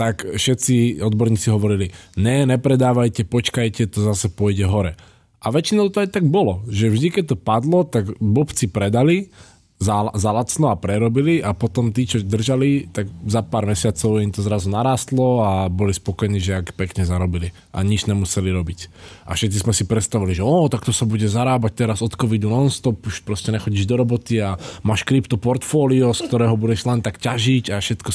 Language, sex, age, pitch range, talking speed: Slovak, male, 20-39, 100-120 Hz, 180 wpm